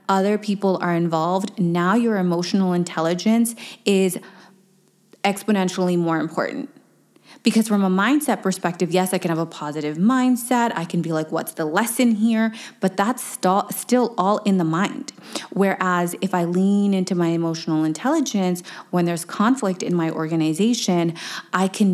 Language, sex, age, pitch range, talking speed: English, female, 20-39, 170-210 Hz, 150 wpm